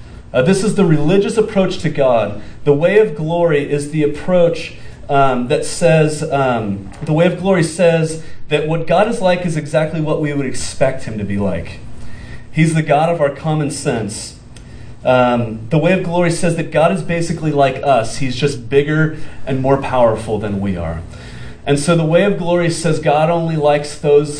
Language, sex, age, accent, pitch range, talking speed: English, male, 40-59, American, 120-160 Hz, 190 wpm